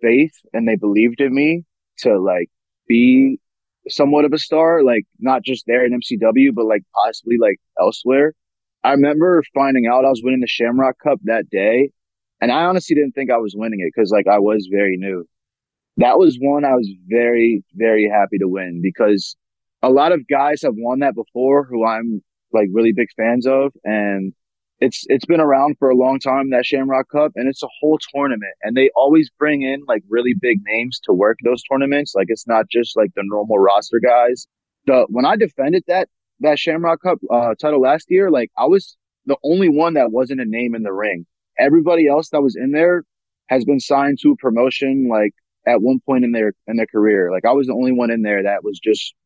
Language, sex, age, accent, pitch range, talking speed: English, male, 20-39, American, 110-145 Hz, 210 wpm